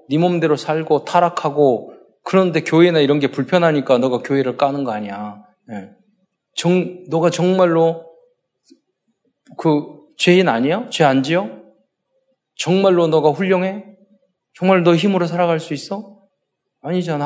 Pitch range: 130-200 Hz